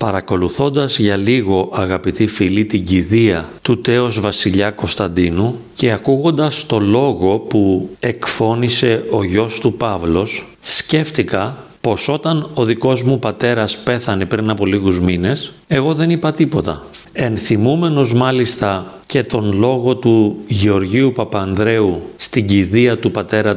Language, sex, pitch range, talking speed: Greek, male, 100-135 Hz, 125 wpm